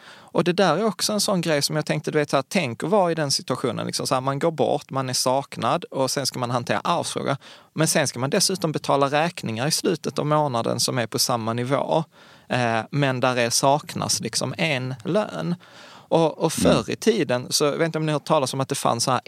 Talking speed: 245 wpm